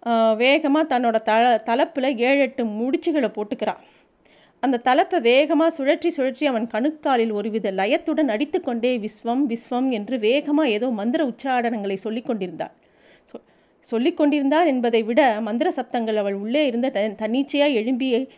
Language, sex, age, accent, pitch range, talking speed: Tamil, female, 30-49, native, 230-290 Hz, 115 wpm